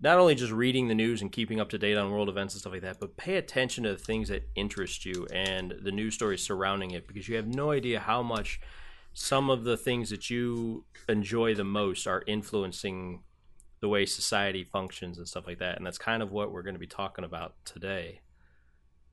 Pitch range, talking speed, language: 95-115 Hz, 225 wpm, English